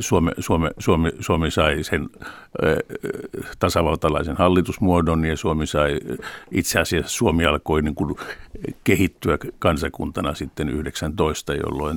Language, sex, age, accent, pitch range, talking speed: Finnish, male, 50-69, native, 75-95 Hz, 110 wpm